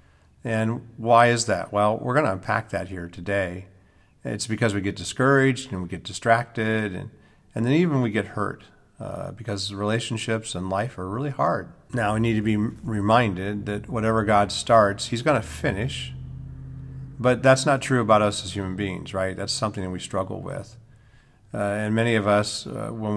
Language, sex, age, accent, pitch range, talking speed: English, male, 50-69, American, 100-115 Hz, 190 wpm